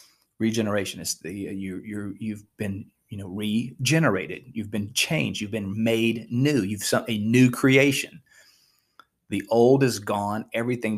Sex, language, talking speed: male, English, 155 wpm